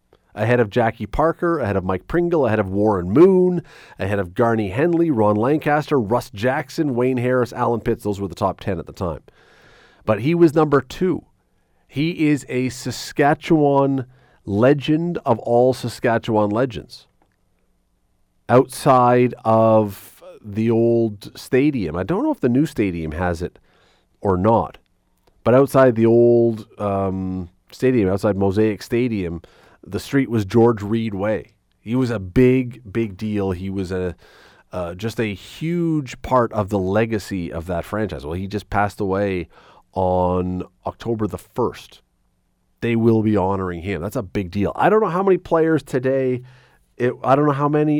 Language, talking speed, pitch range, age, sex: English, 160 wpm, 100-130 Hz, 40-59, male